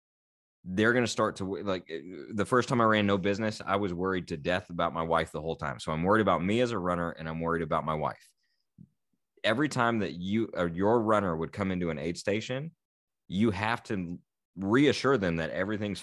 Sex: male